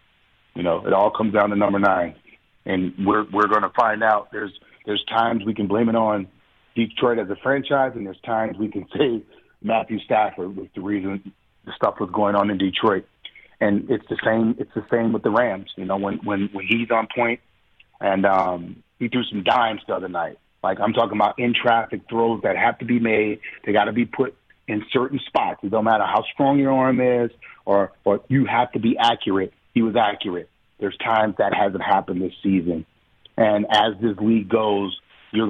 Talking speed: 205 wpm